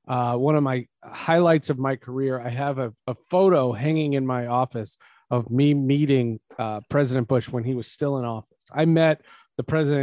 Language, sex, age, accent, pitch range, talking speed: English, male, 40-59, American, 120-150 Hz, 195 wpm